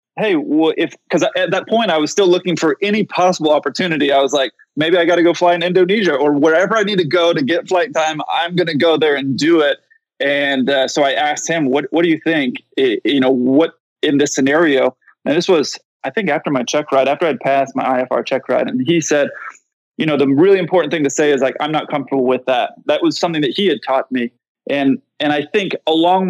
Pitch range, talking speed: 140-180 Hz, 250 wpm